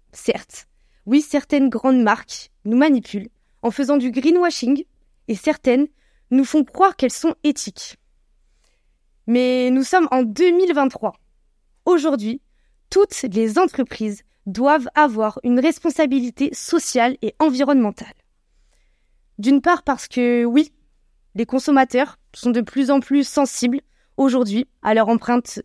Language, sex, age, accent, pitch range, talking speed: French, female, 20-39, French, 230-295 Hz, 120 wpm